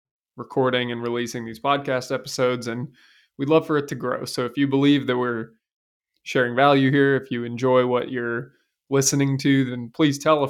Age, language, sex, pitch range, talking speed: 20-39, English, male, 125-140 Hz, 190 wpm